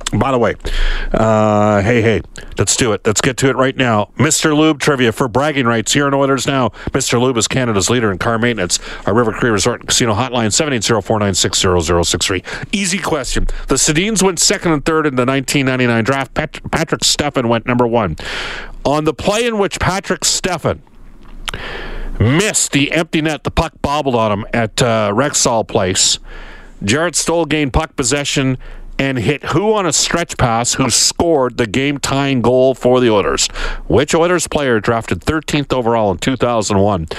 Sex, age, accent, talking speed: male, 50-69, American, 185 wpm